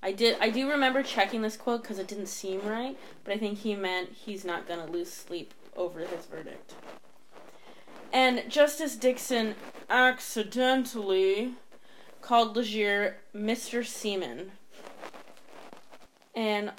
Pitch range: 195-235 Hz